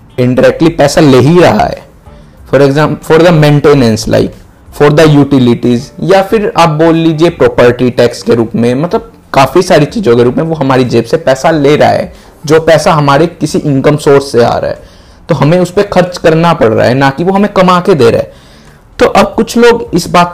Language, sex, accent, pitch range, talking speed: Hindi, male, native, 130-180 Hz, 140 wpm